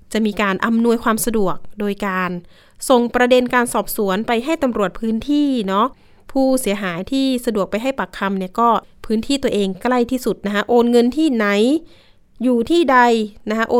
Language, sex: Thai, female